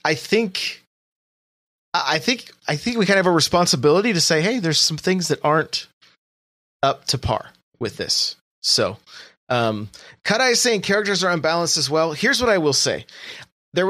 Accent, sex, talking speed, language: American, male, 175 wpm, English